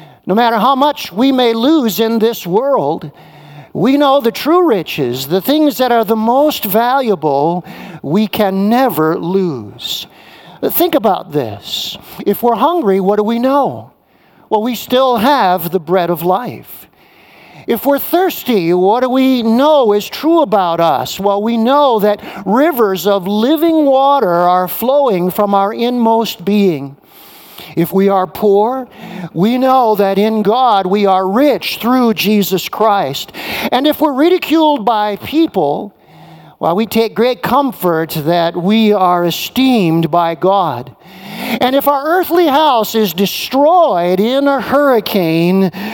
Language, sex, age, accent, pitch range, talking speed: English, male, 50-69, American, 185-260 Hz, 145 wpm